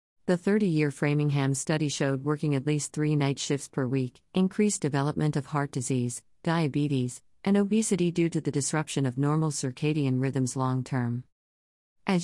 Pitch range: 130-160 Hz